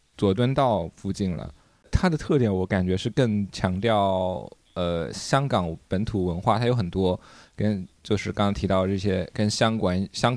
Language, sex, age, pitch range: Chinese, male, 20-39, 95-120 Hz